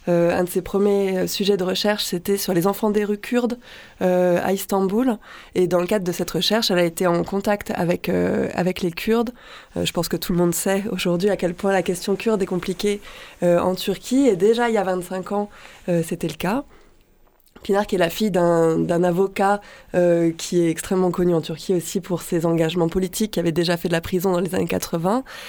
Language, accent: French, French